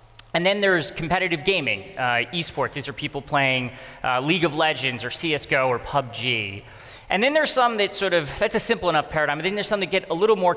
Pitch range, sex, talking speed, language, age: 130-170 Hz, male, 225 wpm, English, 30-49